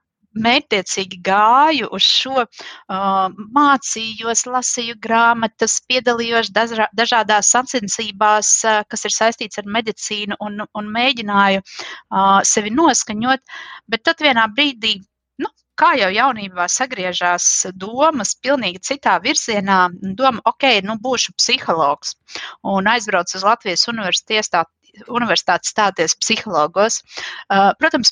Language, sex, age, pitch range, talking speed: English, female, 30-49, 190-245 Hz, 105 wpm